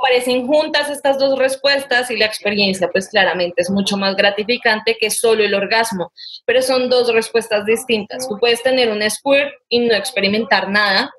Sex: female